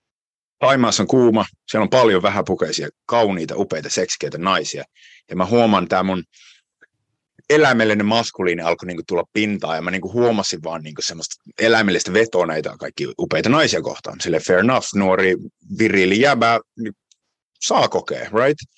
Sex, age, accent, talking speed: male, 30-49, native, 145 wpm